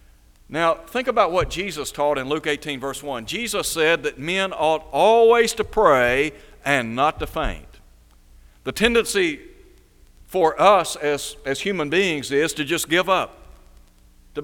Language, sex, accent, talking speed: English, male, American, 155 wpm